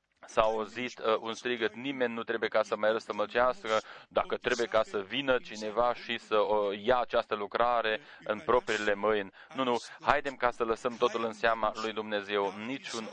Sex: male